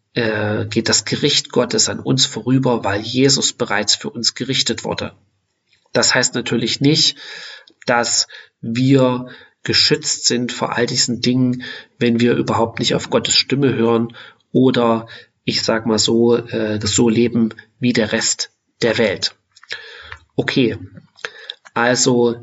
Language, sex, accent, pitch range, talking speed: German, male, German, 110-125 Hz, 130 wpm